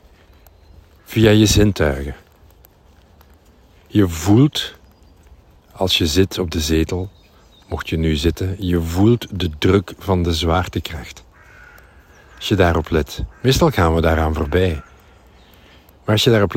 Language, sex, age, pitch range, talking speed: Dutch, male, 50-69, 80-105 Hz, 125 wpm